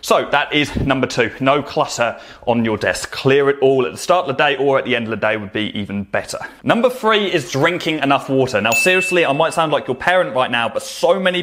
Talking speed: 255 wpm